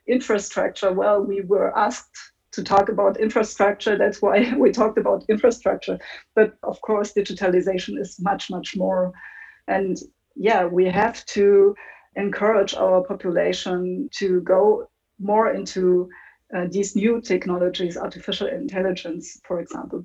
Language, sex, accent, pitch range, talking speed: English, female, German, 185-210 Hz, 130 wpm